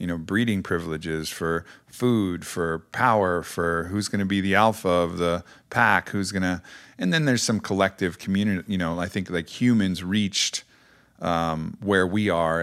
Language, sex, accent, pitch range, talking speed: English, male, American, 80-95 Hz, 180 wpm